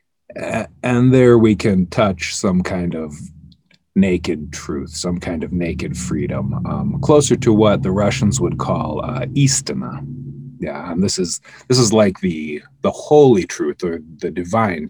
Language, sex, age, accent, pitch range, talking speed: English, male, 30-49, American, 90-135 Hz, 155 wpm